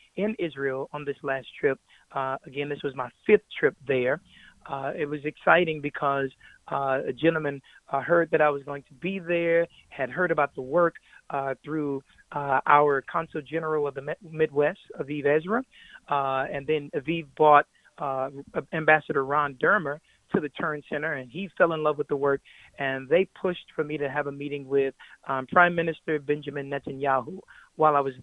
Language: English